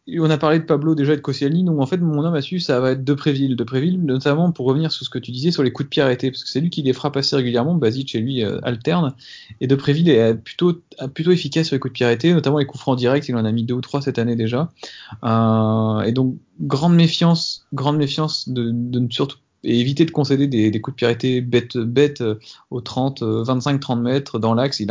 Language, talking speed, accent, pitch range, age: French, 260 wpm, French, 120-150 Hz, 20-39